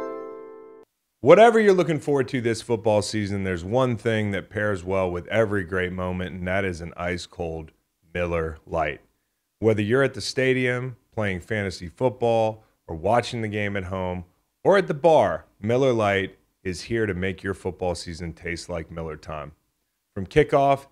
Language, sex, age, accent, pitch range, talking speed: English, male, 30-49, American, 90-115 Hz, 165 wpm